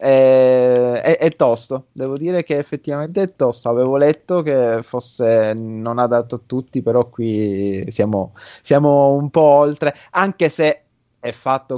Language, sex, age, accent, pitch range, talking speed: Italian, male, 20-39, native, 120-145 Hz, 145 wpm